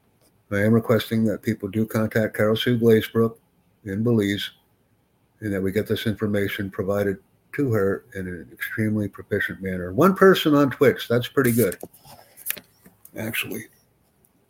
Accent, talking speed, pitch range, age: American, 140 wpm, 100-115 Hz, 60-79